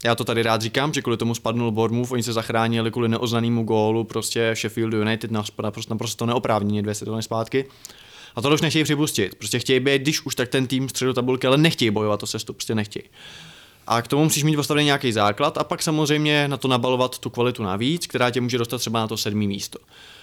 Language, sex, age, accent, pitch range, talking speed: Czech, male, 20-39, native, 115-135 Hz, 220 wpm